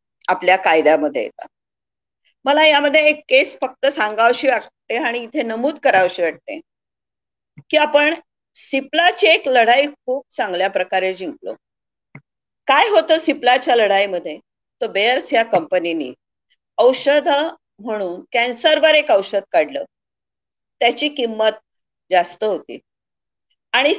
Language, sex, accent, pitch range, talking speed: Marathi, female, native, 210-305 Hz, 85 wpm